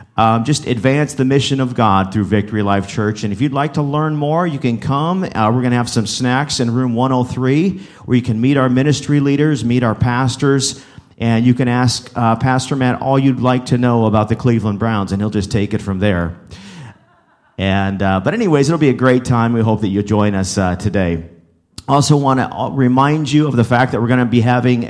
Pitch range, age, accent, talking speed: 105-130 Hz, 40-59, American, 230 wpm